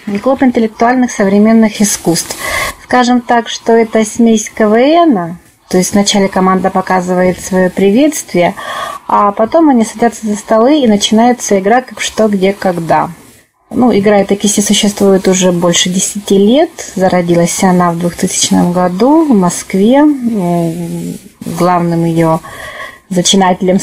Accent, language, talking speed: native, Russian, 125 wpm